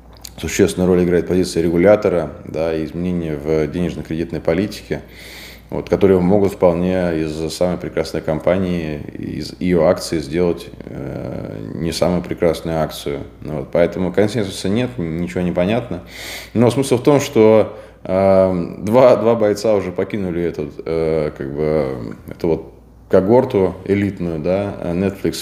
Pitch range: 80-100 Hz